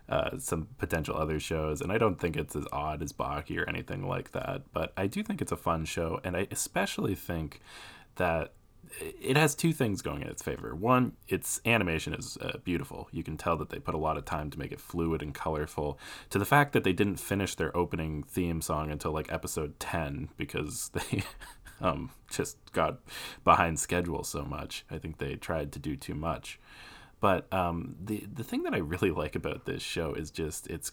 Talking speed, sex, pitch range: 210 wpm, male, 75-95 Hz